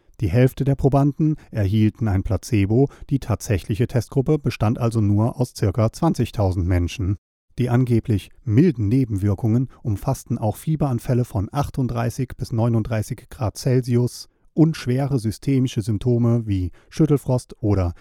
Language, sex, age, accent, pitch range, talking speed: German, male, 40-59, German, 105-130 Hz, 125 wpm